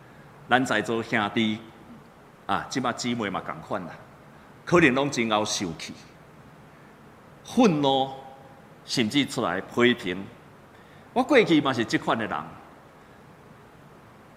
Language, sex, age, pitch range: Chinese, male, 50-69, 150-240 Hz